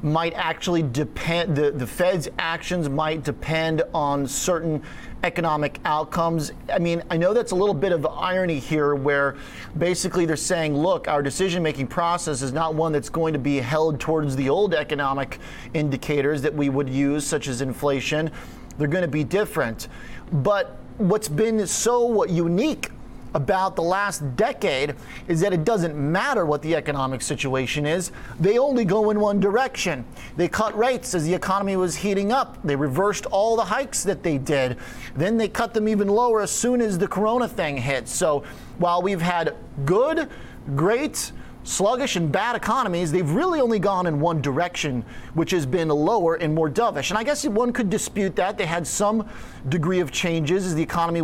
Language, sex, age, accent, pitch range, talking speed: English, male, 30-49, American, 150-200 Hz, 180 wpm